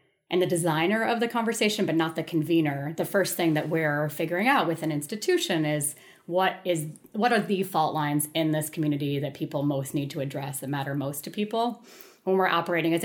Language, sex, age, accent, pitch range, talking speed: English, female, 30-49, American, 150-180 Hz, 210 wpm